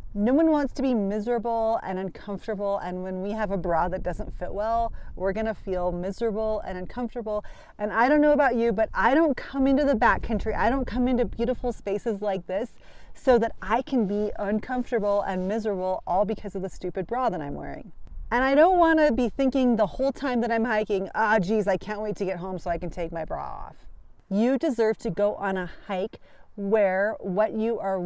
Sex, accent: female, American